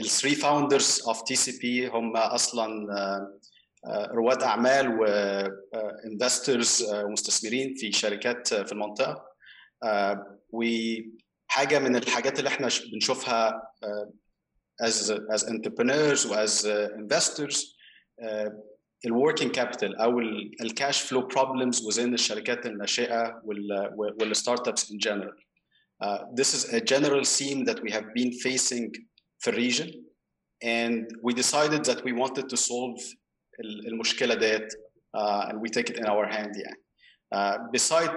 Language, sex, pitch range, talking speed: Arabic, male, 105-125 Hz, 105 wpm